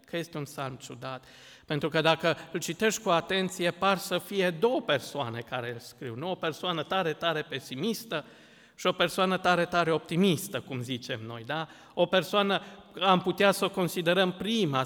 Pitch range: 145-195 Hz